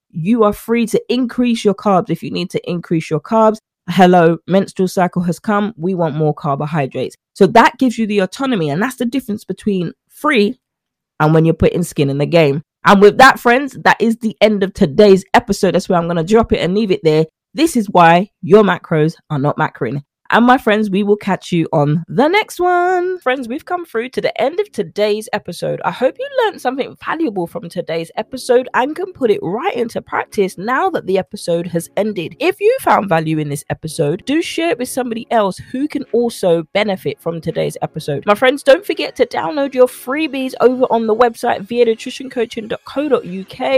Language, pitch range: English, 170-255 Hz